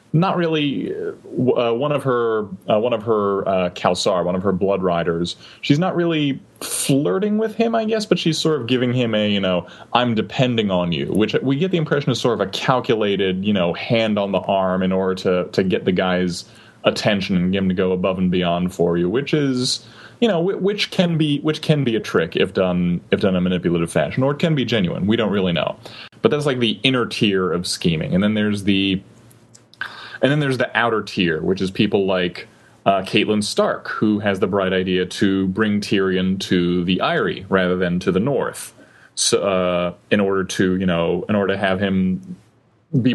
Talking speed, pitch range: 215 wpm, 95-130 Hz